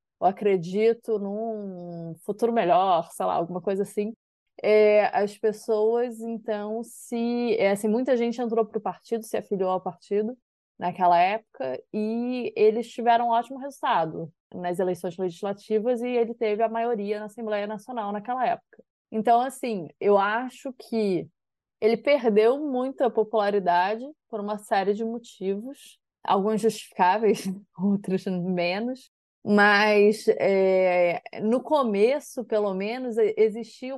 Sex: female